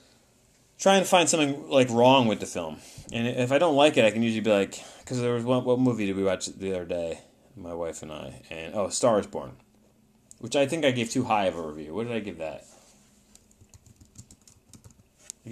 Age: 30-49